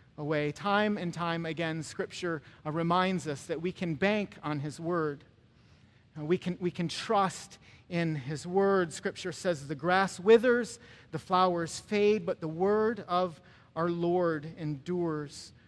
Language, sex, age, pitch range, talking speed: English, male, 40-59, 160-225 Hz, 140 wpm